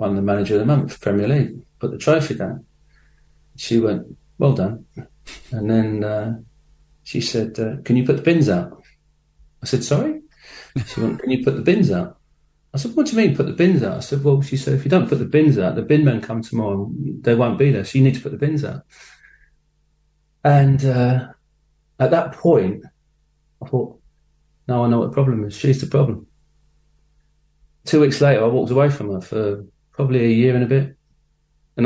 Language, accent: English, British